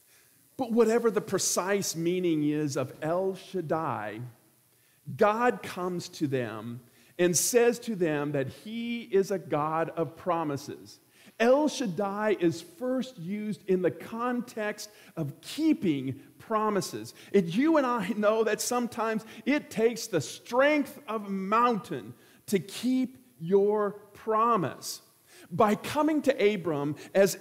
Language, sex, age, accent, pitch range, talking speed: English, male, 40-59, American, 170-230 Hz, 125 wpm